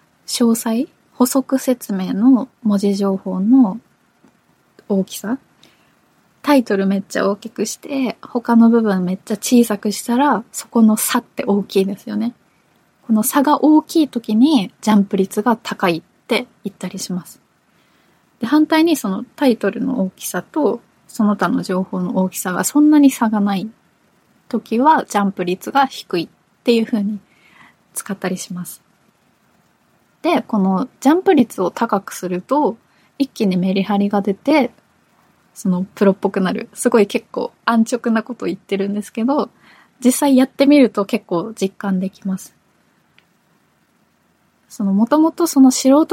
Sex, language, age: female, Japanese, 20-39